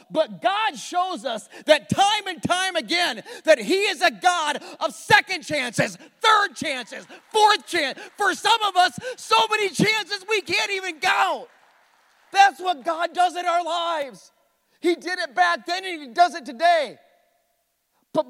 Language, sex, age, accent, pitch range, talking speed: English, male, 40-59, American, 205-340 Hz, 165 wpm